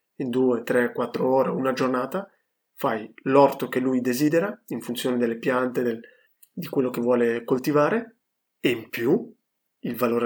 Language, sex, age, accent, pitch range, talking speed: Italian, male, 20-39, native, 125-185 Hz, 160 wpm